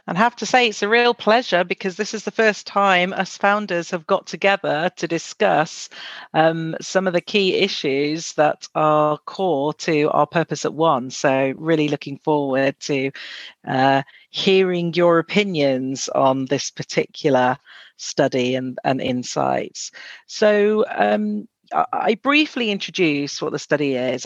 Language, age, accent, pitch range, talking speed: English, 40-59, British, 140-180 Hz, 150 wpm